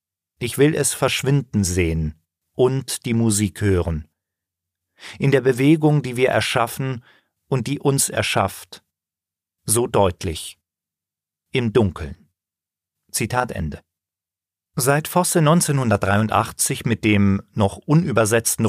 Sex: male